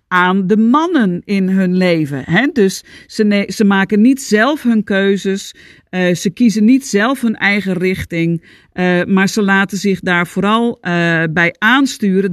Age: 50-69